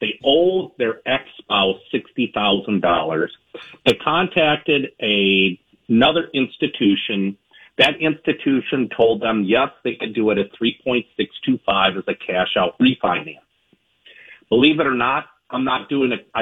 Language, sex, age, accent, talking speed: English, male, 50-69, American, 145 wpm